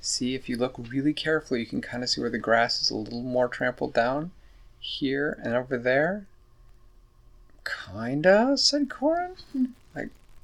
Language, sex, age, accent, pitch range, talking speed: English, male, 30-49, American, 120-185 Hz, 165 wpm